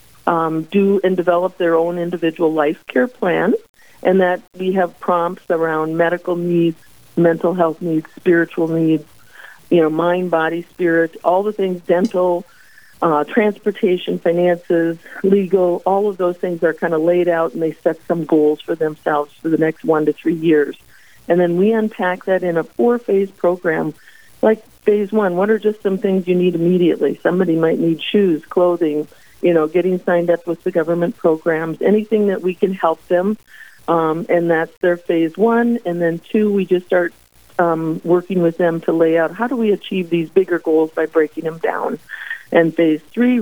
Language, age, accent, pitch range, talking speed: English, 50-69, American, 160-185 Hz, 180 wpm